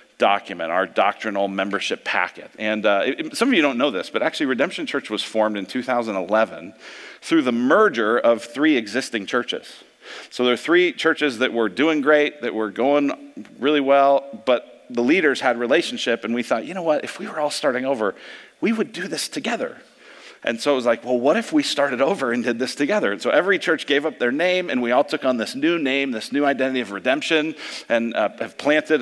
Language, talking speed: English, 215 wpm